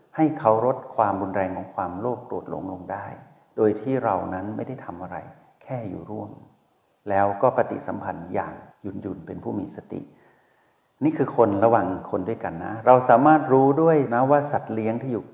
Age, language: 60-79, Thai